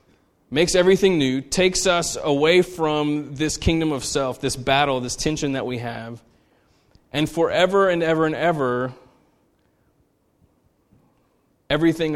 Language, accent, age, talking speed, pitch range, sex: English, American, 30-49, 125 wpm, 120-150 Hz, male